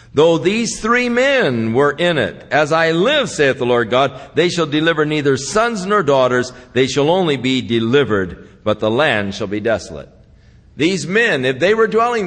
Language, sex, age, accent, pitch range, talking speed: English, male, 50-69, American, 120-190 Hz, 185 wpm